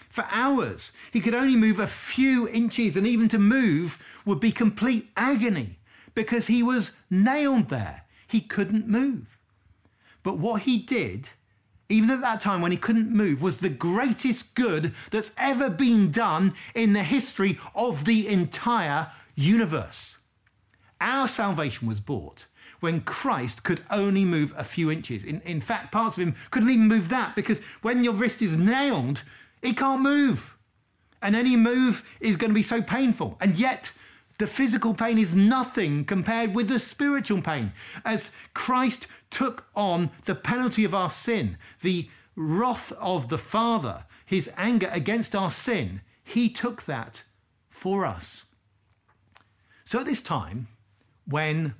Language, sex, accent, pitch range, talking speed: English, male, British, 145-230 Hz, 155 wpm